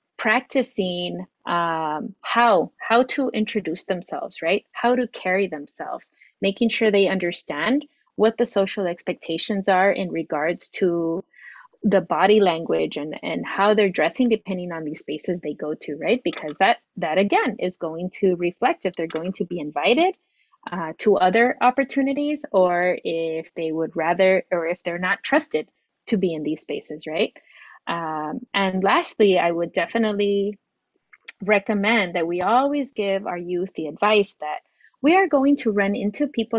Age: 30-49